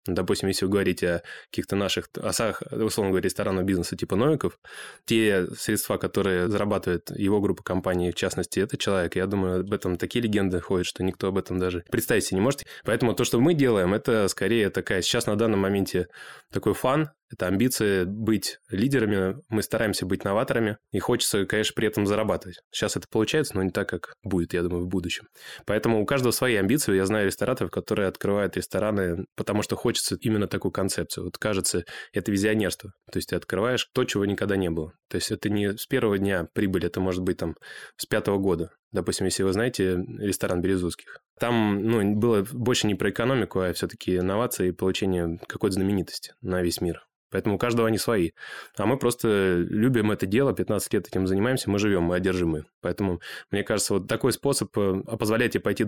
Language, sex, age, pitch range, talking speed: Russian, male, 20-39, 95-110 Hz, 190 wpm